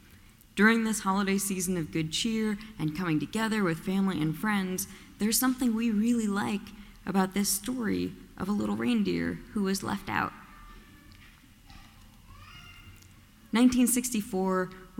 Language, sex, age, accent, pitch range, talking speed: English, female, 20-39, American, 145-190 Hz, 125 wpm